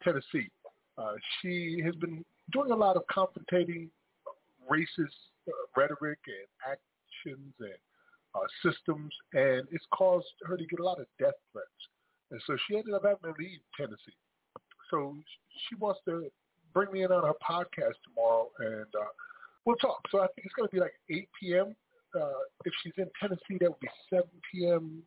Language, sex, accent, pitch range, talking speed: English, male, American, 155-200 Hz, 170 wpm